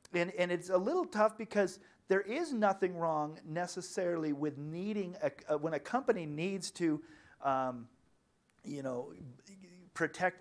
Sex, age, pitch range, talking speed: male, 40-59, 130-180 Hz, 135 wpm